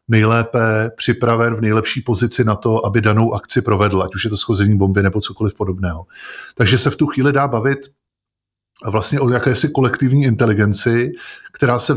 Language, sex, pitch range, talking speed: Czech, male, 110-120 Hz, 170 wpm